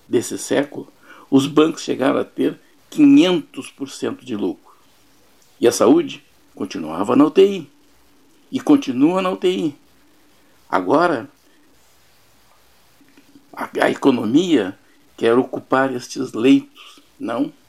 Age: 60-79